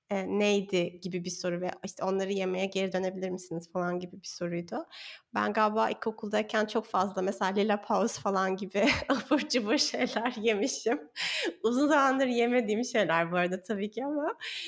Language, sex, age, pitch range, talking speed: Turkish, female, 30-49, 185-230 Hz, 160 wpm